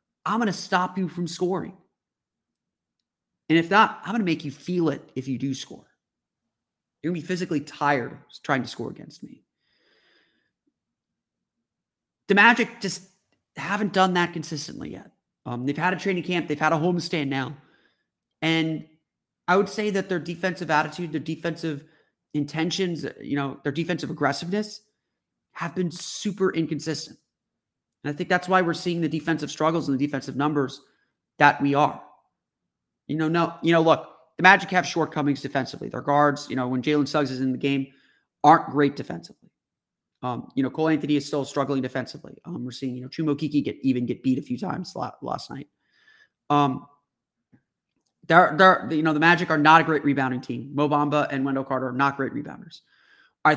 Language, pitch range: English, 140-175 Hz